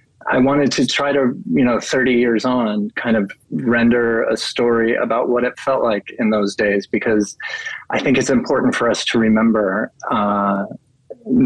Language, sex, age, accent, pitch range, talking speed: English, male, 30-49, American, 105-125 Hz, 175 wpm